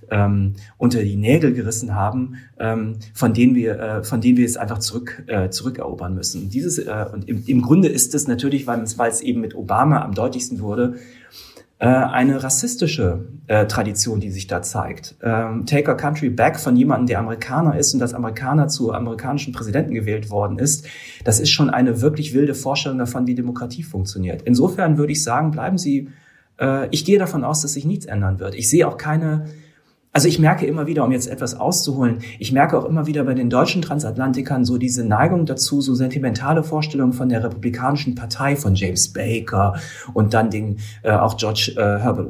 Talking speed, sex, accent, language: 185 wpm, male, German, German